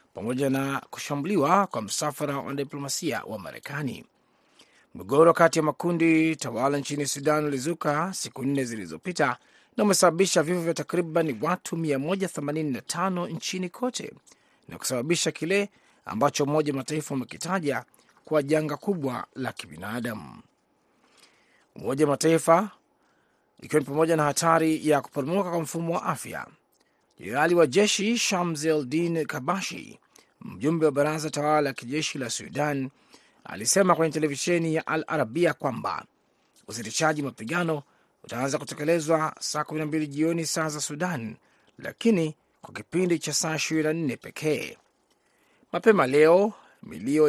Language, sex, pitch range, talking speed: Swahili, male, 145-170 Hz, 115 wpm